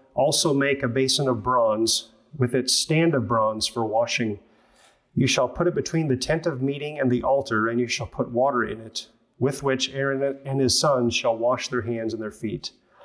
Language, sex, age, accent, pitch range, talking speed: English, male, 30-49, American, 120-140 Hz, 205 wpm